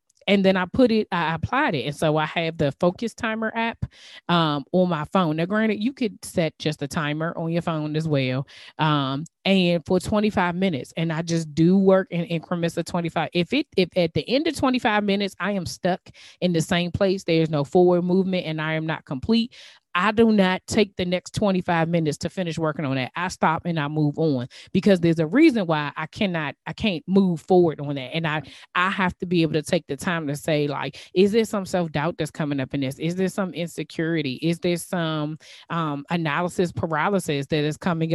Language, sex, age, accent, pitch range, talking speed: English, female, 20-39, American, 155-185 Hz, 220 wpm